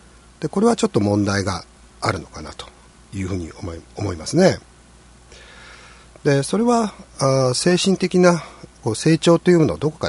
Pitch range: 85-145 Hz